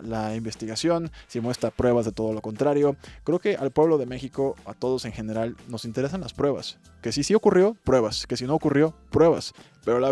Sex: male